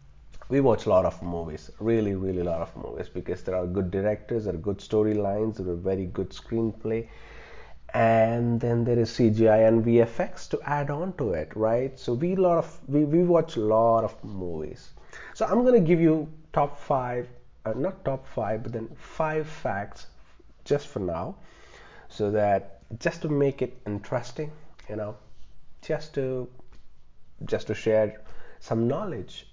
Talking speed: 170 wpm